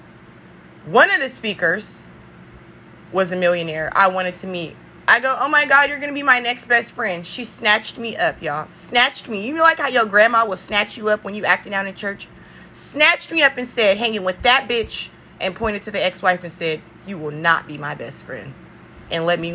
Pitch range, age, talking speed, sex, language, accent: 170-225 Hz, 20-39, 225 wpm, female, English, American